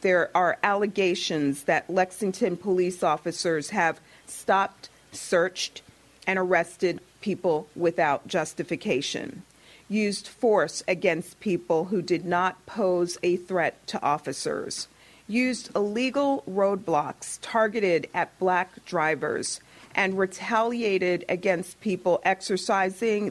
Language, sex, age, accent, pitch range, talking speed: English, female, 40-59, American, 170-205 Hz, 100 wpm